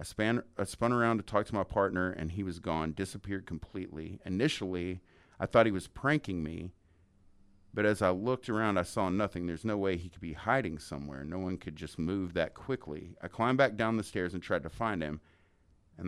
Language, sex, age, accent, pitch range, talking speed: English, male, 40-59, American, 85-100 Hz, 215 wpm